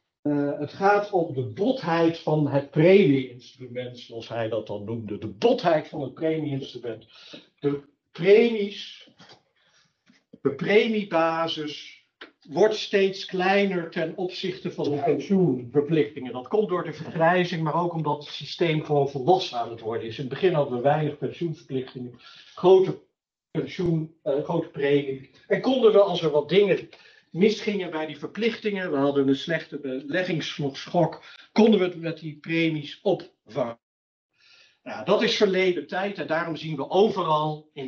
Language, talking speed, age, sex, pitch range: Dutch, 145 wpm, 60-79, male, 135-180 Hz